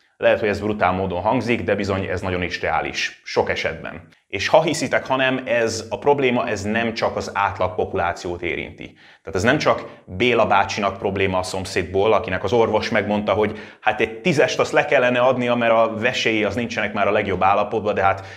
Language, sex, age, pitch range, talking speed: Hungarian, male, 30-49, 95-125 Hz, 195 wpm